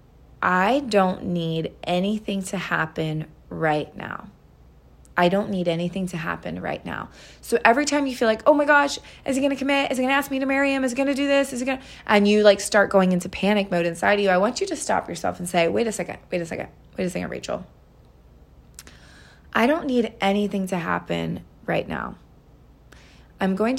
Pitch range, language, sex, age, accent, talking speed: 170-230 Hz, English, female, 20-39, American, 210 wpm